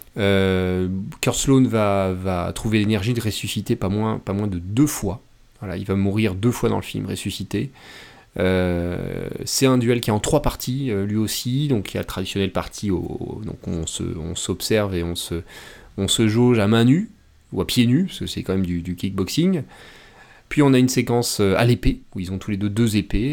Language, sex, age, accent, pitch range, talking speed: French, male, 30-49, French, 95-130 Hz, 225 wpm